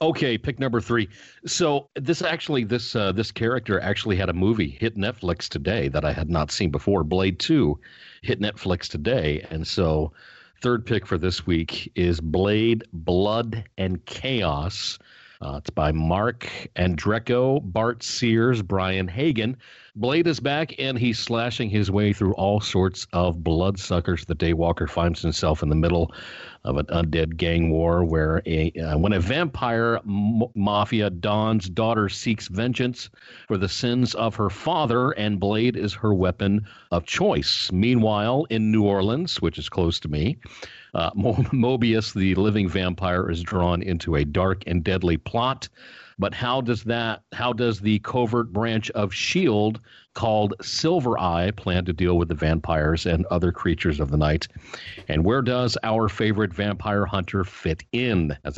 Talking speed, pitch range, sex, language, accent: 160 wpm, 90-115 Hz, male, English, American